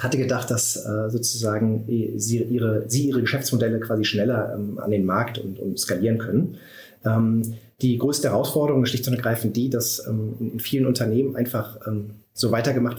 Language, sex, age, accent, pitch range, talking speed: German, male, 30-49, German, 110-130 Hz, 150 wpm